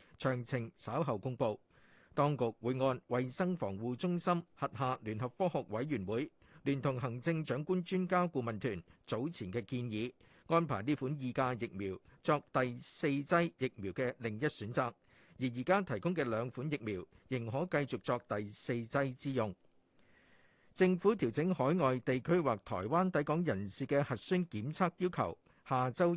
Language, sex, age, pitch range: Chinese, male, 50-69, 120-165 Hz